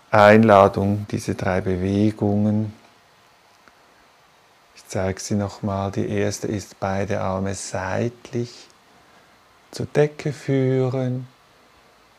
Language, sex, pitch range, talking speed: German, male, 100-120 Hz, 85 wpm